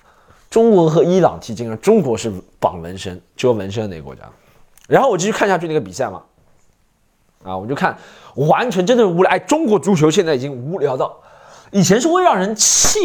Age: 20-39